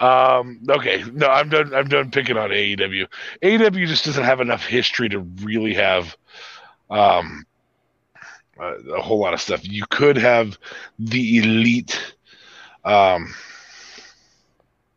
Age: 30-49